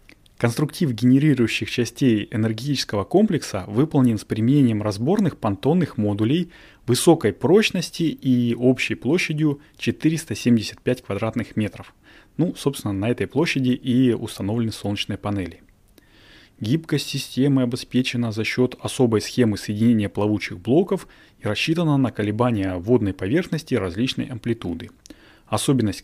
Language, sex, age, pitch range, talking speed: Russian, male, 30-49, 105-135 Hz, 110 wpm